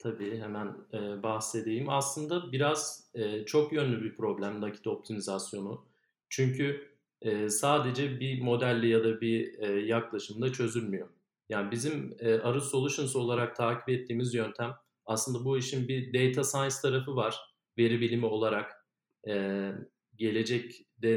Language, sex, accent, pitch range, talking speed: Turkish, male, native, 115-140 Hz, 115 wpm